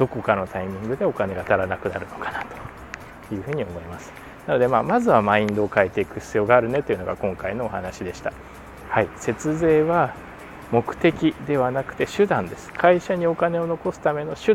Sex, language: male, Japanese